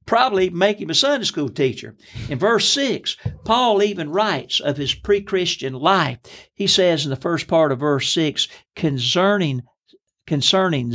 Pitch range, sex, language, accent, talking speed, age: 140-190 Hz, male, English, American, 155 wpm, 60-79